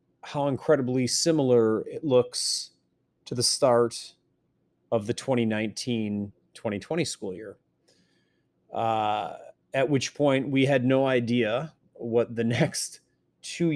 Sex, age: male, 30-49